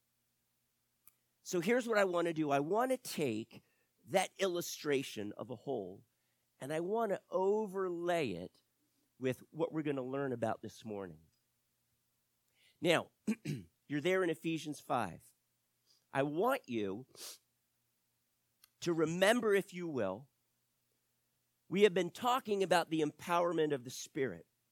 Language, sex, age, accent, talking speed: English, male, 50-69, American, 135 wpm